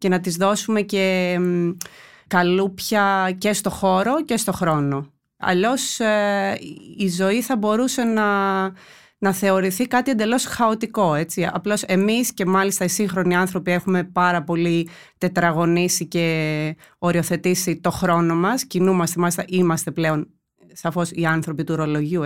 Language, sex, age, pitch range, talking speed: Greek, female, 30-49, 175-220 Hz, 130 wpm